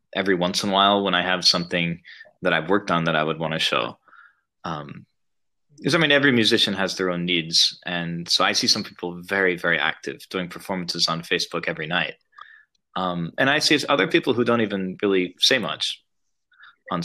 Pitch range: 85-100 Hz